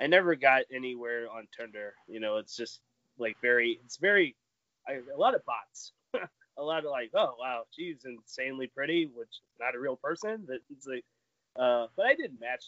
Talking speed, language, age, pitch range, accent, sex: 200 wpm, English, 20-39, 120-180 Hz, American, male